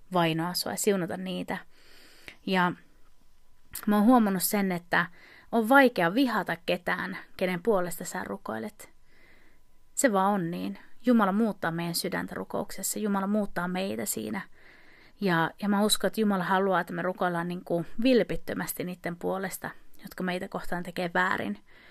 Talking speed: 140 wpm